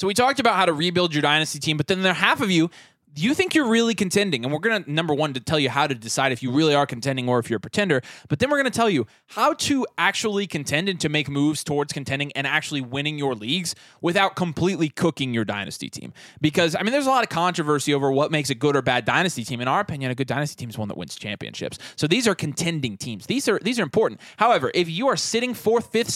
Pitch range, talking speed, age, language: 145-205 Hz, 270 wpm, 20-39, English